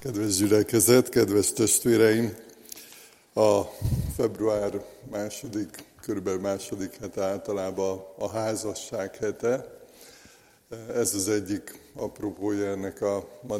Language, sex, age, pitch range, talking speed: Hungarian, male, 60-79, 100-115 Hz, 95 wpm